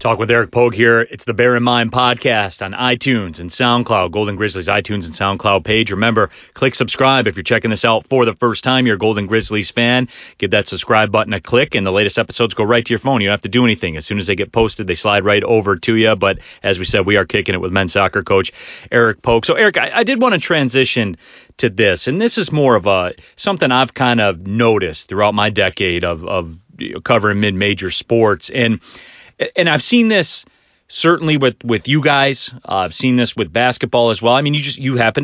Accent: American